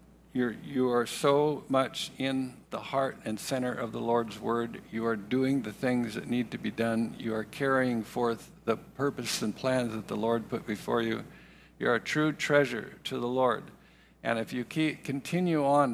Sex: male